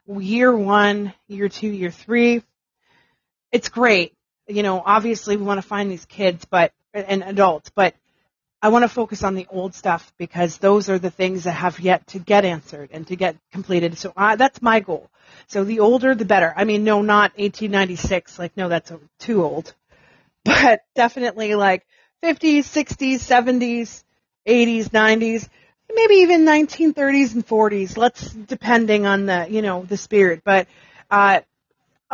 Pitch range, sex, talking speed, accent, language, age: 185-235 Hz, female, 160 wpm, American, English, 30-49